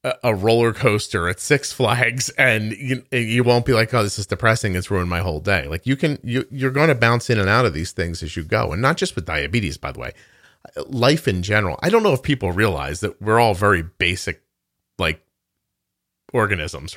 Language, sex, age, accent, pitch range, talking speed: English, male, 40-59, American, 90-120 Hz, 215 wpm